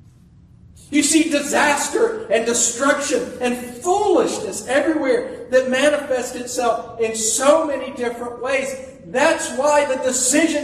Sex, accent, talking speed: male, American, 115 wpm